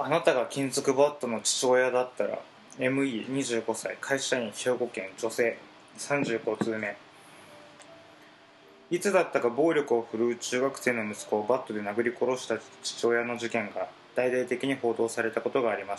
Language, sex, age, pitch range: Japanese, male, 20-39, 110-135 Hz